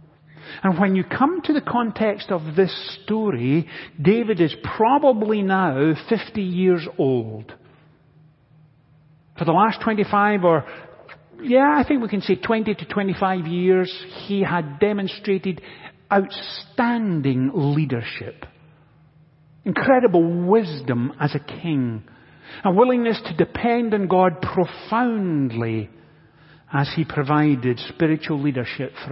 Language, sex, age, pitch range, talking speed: English, male, 50-69, 140-190 Hz, 115 wpm